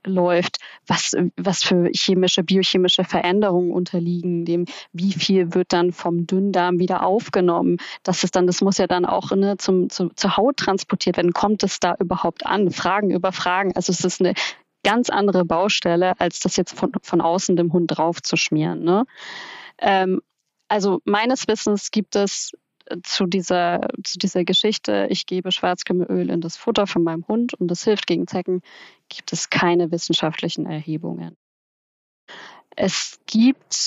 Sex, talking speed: female, 160 wpm